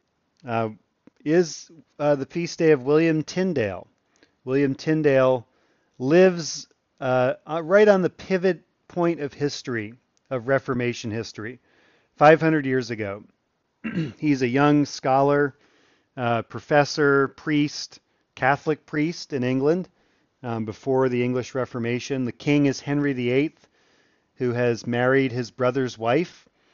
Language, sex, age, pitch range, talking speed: English, male, 40-59, 120-145 Hz, 120 wpm